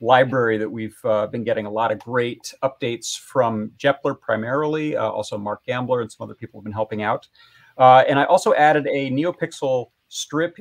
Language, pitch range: English, 110-135 Hz